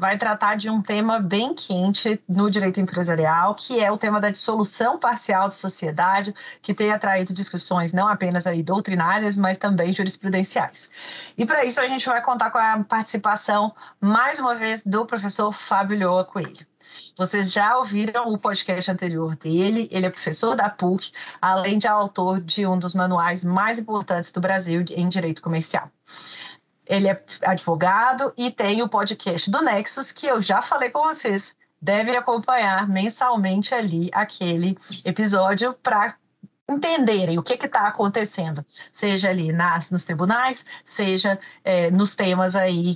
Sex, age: female, 30-49